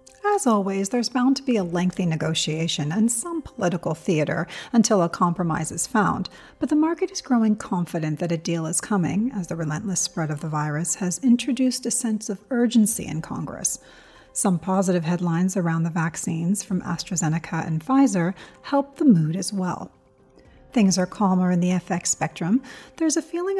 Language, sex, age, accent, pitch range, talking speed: English, female, 40-59, American, 170-240 Hz, 175 wpm